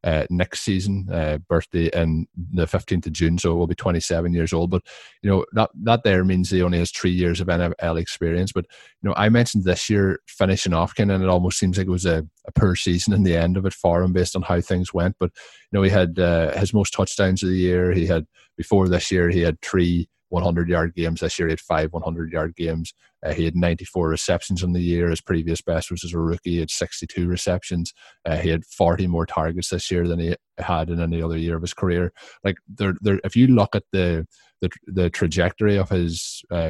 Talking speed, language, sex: 240 wpm, English, male